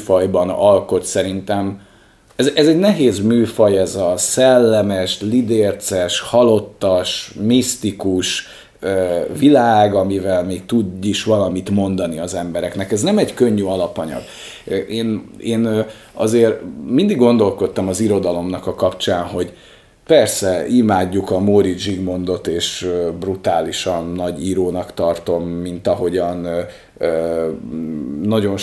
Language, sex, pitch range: Hungarian, male, 90-110 Hz